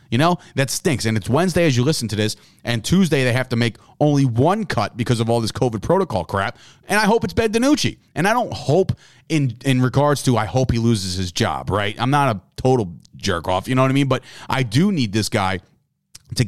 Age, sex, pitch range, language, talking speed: 30-49, male, 110-145 Hz, English, 245 wpm